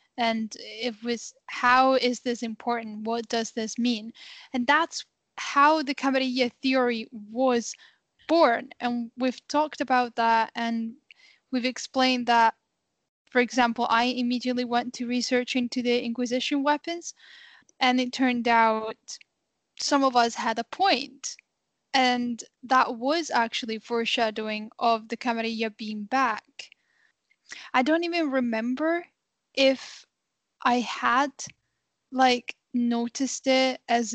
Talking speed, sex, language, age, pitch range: 125 wpm, female, English, 10-29, 230-265 Hz